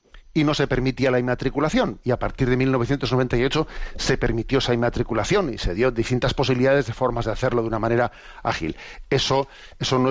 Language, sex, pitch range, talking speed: Spanish, male, 120-140 Hz, 185 wpm